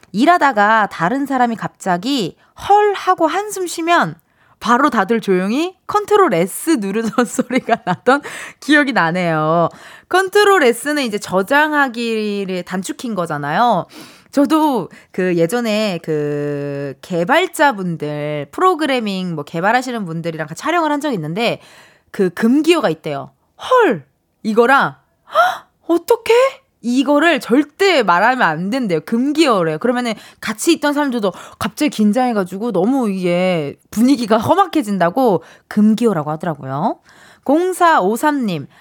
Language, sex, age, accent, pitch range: Korean, female, 20-39, native, 200-330 Hz